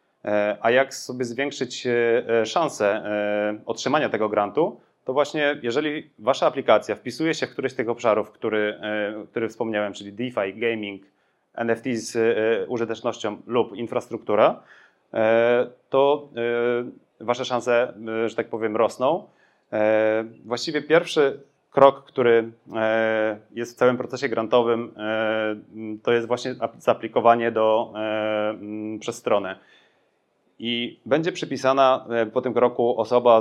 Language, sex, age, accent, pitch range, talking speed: Polish, male, 30-49, native, 110-125 Hz, 110 wpm